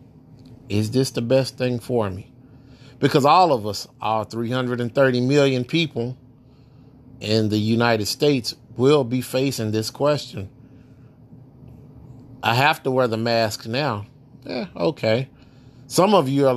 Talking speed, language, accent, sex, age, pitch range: 135 wpm, English, American, male, 30-49, 125-140 Hz